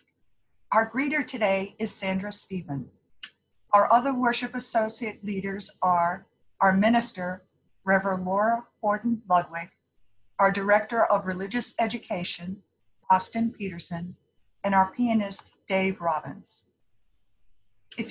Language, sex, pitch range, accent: English, female, 180-225 Hz, American